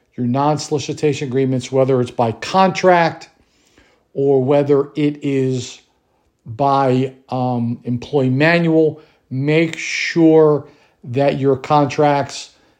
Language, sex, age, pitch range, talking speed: English, male, 50-69, 130-155 Hz, 95 wpm